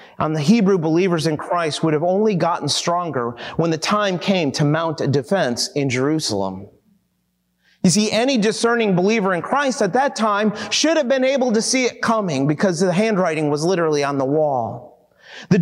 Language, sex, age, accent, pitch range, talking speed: English, male, 30-49, American, 155-220 Hz, 185 wpm